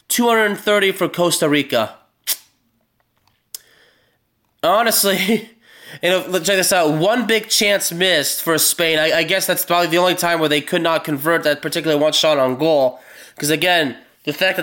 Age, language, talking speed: 20-39, English, 165 wpm